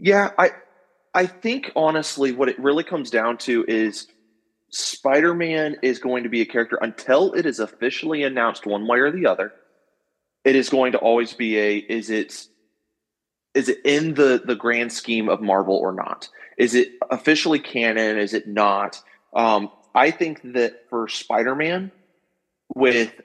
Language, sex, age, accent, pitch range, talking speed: English, male, 30-49, American, 110-140 Hz, 170 wpm